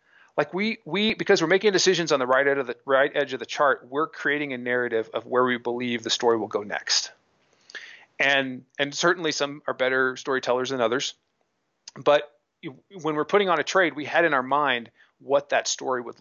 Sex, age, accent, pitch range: male, 40-59, American, 125-150 Hz